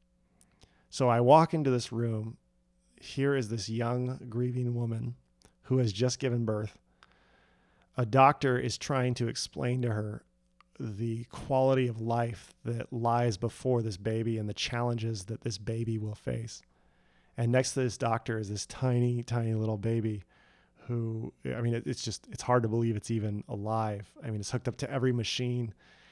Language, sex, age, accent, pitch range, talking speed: English, male, 30-49, American, 105-125 Hz, 170 wpm